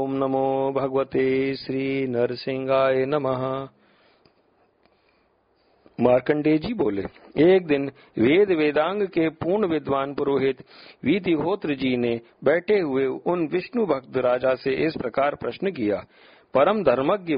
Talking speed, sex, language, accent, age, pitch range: 110 wpm, male, Hindi, native, 50-69, 125-160 Hz